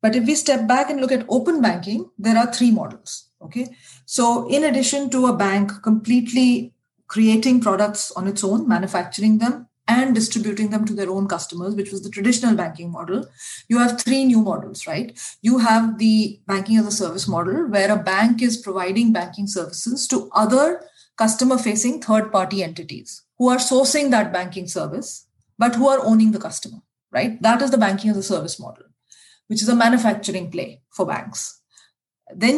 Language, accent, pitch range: English, Indian, 195-245 Hz